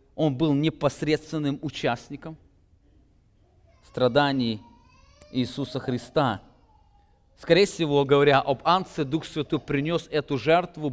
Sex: male